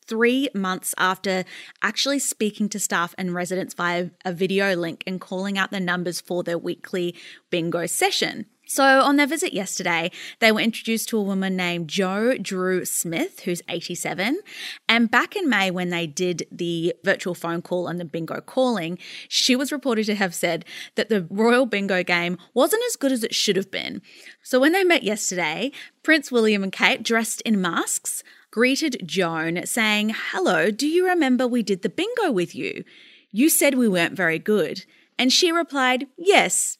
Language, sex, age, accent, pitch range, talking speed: English, female, 20-39, Australian, 180-265 Hz, 180 wpm